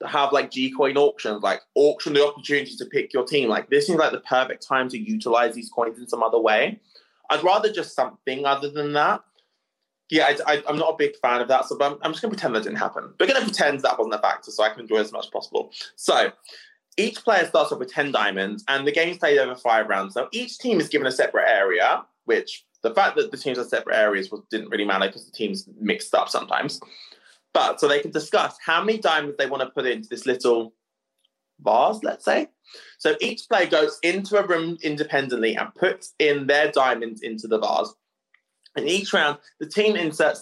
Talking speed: 225 wpm